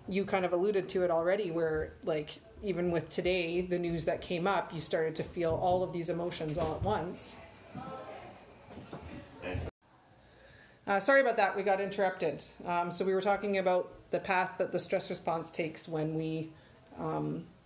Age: 30-49